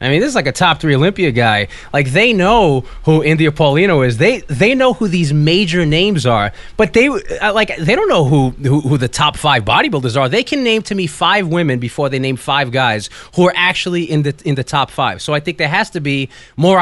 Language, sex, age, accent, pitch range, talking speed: English, male, 20-39, American, 145-210 Hz, 245 wpm